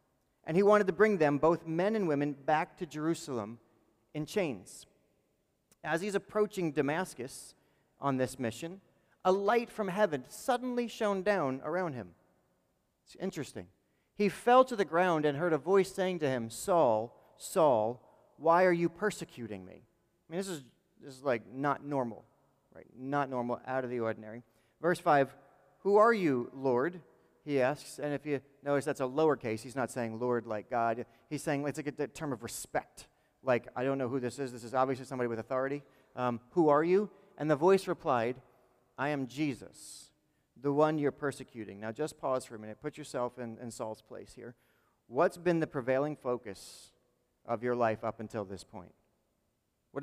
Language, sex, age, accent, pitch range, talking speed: English, male, 40-59, American, 120-170 Hz, 180 wpm